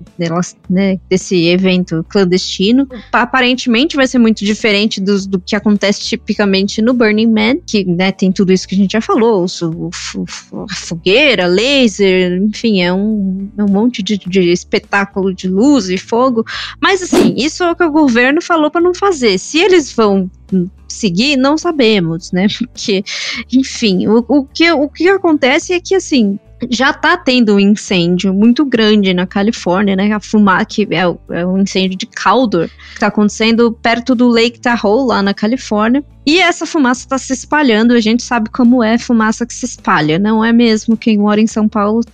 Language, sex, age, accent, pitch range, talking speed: Portuguese, female, 20-39, Brazilian, 195-260 Hz, 175 wpm